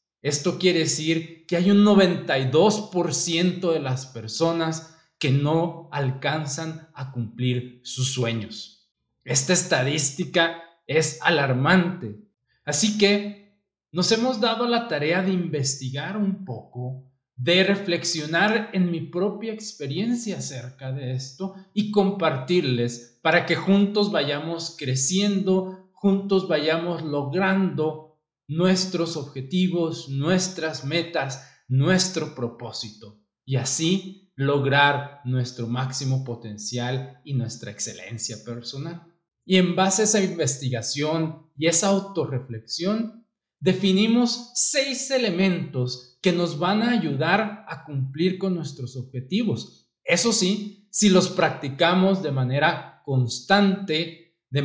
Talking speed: 110 wpm